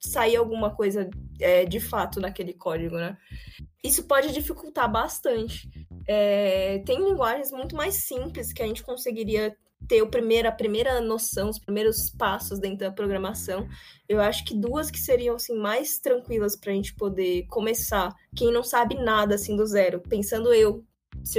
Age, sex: 10-29, female